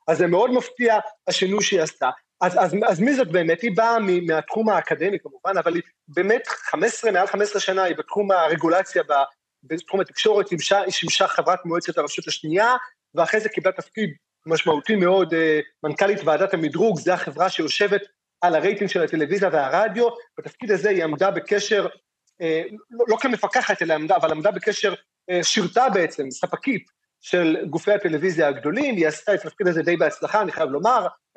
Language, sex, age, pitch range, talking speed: Hebrew, male, 30-49, 165-215 Hz, 160 wpm